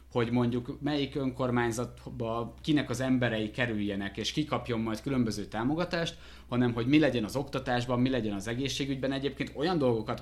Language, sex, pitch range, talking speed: Hungarian, male, 115-145 Hz, 160 wpm